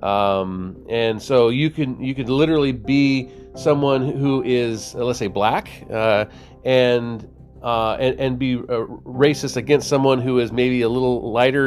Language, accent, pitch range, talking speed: English, American, 110-135 Hz, 160 wpm